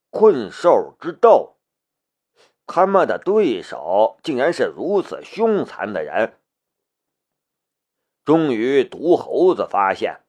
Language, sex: Chinese, male